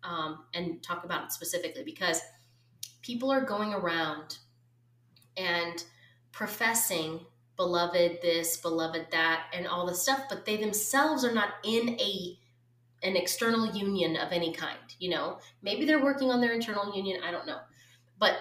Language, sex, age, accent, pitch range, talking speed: English, female, 20-39, American, 165-240 Hz, 155 wpm